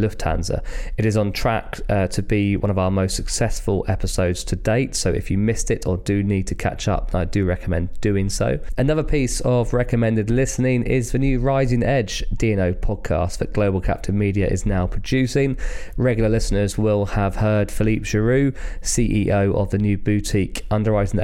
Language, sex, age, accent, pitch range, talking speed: English, male, 20-39, British, 95-115 Hz, 180 wpm